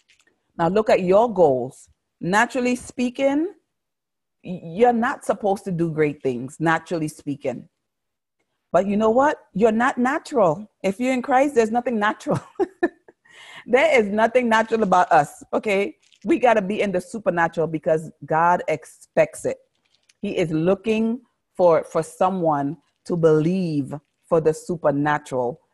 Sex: female